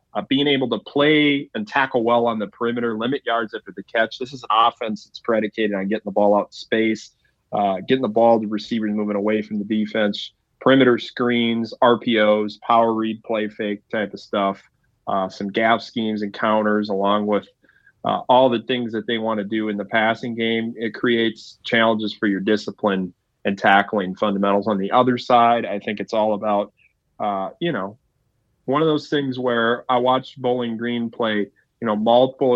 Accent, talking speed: American, 190 wpm